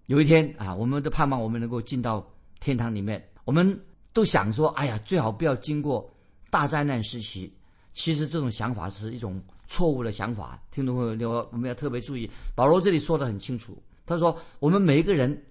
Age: 50-69